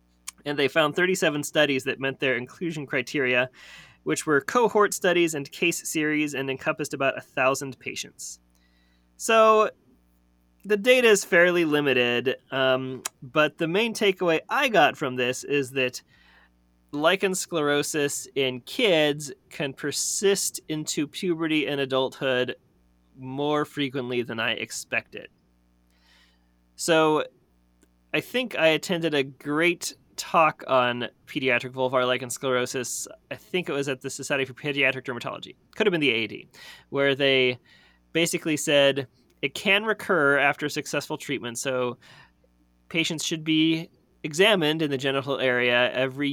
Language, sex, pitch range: English, male, 125-155 Hz